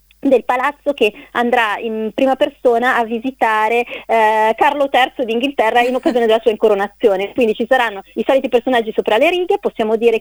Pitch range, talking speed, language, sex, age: 215-255 Hz, 170 wpm, Italian, female, 30-49